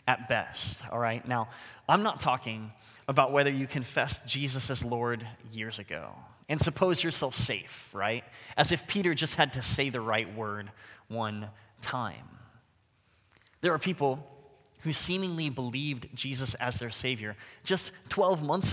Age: 20-39